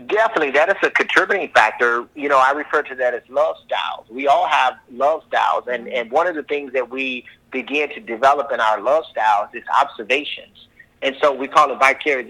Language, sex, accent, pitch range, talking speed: English, male, American, 125-155 Hz, 210 wpm